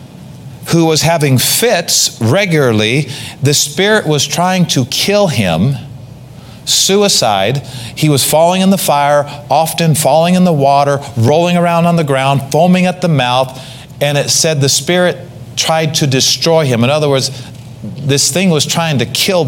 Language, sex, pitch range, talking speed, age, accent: English, male, 130-165 Hz, 155 wpm, 40-59, American